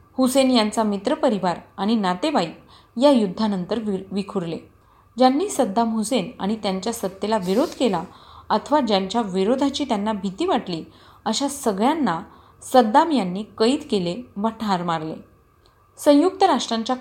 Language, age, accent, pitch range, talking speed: Marathi, 30-49, native, 200-255 Hz, 120 wpm